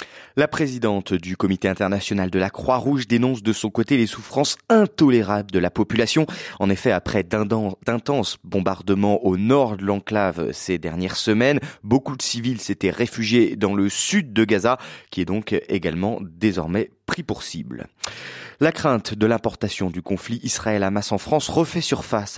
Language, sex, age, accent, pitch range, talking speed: French, male, 20-39, French, 95-125 Hz, 160 wpm